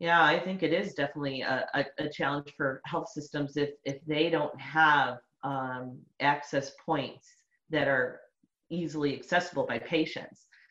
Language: English